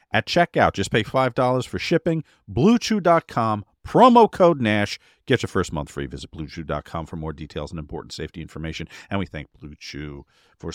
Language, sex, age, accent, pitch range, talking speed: English, male, 50-69, American, 90-125 Hz, 165 wpm